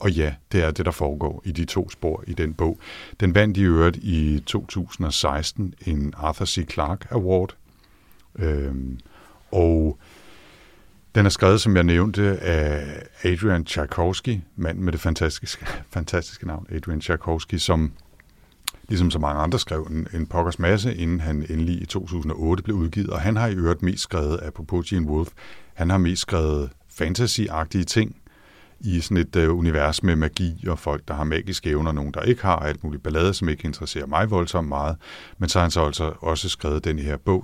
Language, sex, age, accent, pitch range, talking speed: Danish, male, 60-79, native, 75-95 Hz, 180 wpm